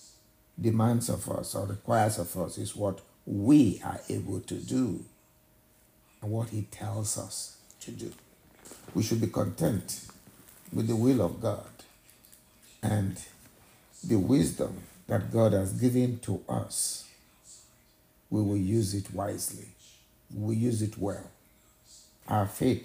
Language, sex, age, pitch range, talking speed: English, male, 60-79, 100-115 Hz, 135 wpm